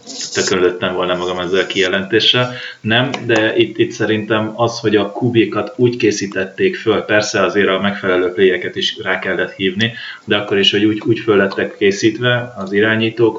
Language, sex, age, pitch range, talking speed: Hungarian, male, 30-49, 100-120 Hz, 165 wpm